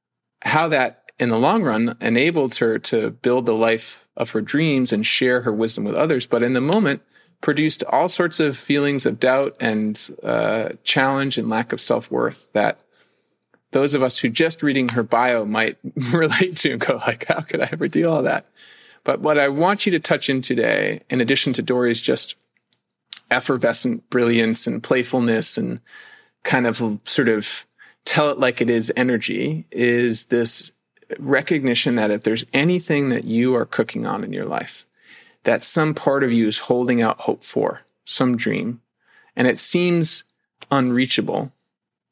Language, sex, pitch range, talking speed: English, male, 120-150 Hz, 170 wpm